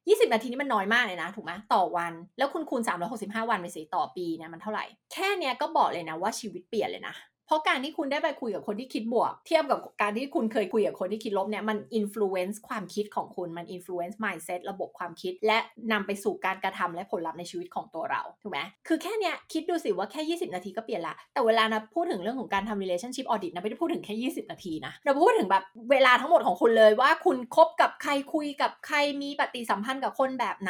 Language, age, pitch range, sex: Thai, 20-39, 200-295 Hz, female